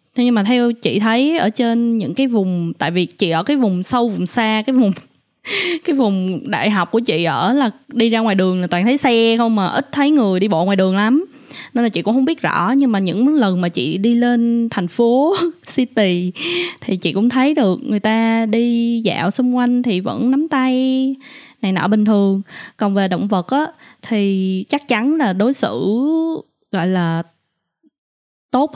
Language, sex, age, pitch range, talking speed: Vietnamese, female, 10-29, 195-260 Hz, 205 wpm